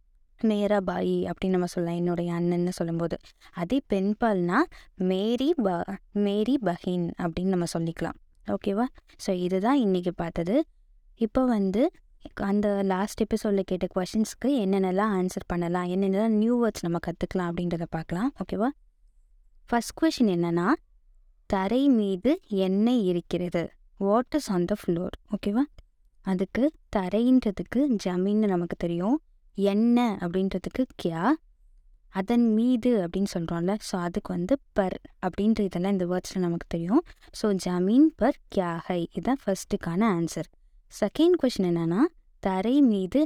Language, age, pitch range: Tamil, 20-39, 180-230 Hz